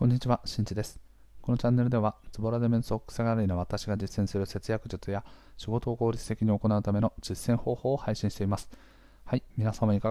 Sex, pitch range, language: male, 95-115 Hz, Japanese